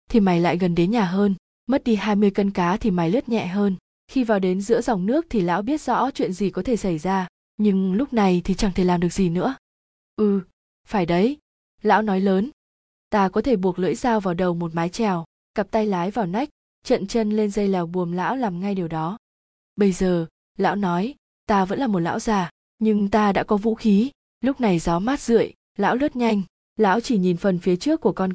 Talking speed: 230 wpm